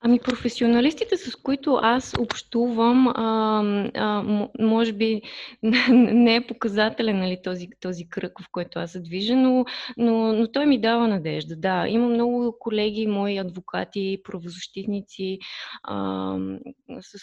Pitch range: 175-215 Hz